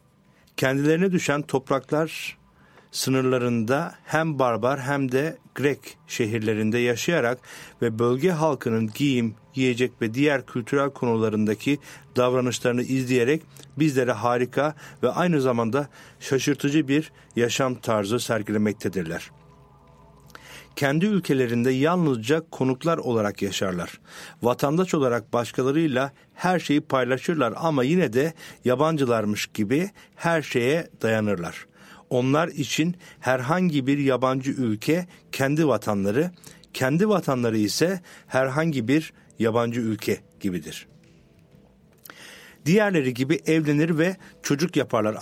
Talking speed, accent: 100 wpm, Turkish